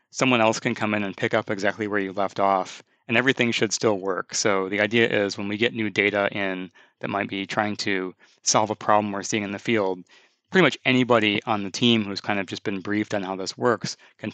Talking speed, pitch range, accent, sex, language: 245 wpm, 100-115 Hz, American, male, English